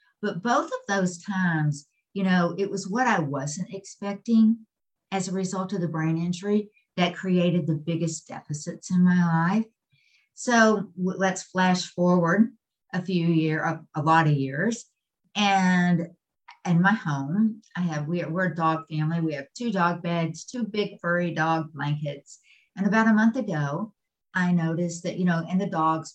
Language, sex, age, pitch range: English, female, 50-69, 160-200 Hz